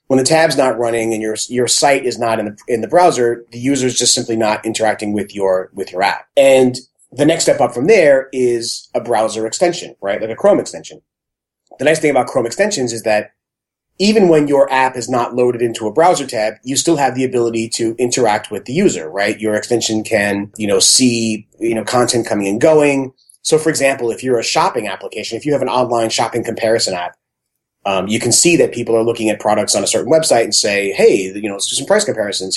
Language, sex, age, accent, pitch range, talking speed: English, male, 30-49, American, 110-140 Hz, 230 wpm